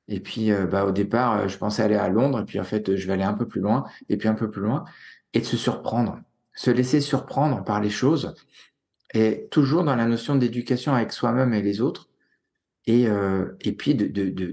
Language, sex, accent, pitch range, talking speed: French, male, French, 105-135 Hz, 225 wpm